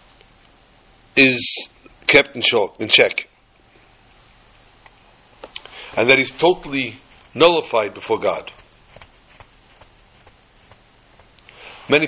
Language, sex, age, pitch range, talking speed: English, male, 60-79, 115-145 Hz, 65 wpm